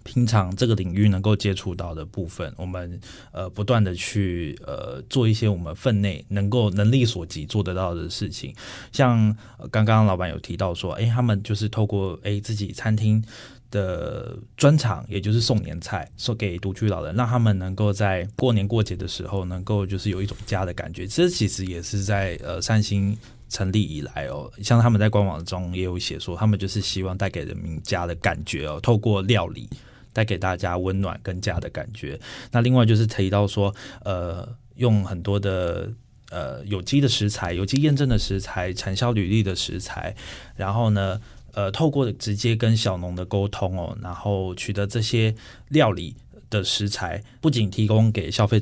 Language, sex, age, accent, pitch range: Chinese, male, 20-39, native, 95-110 Hz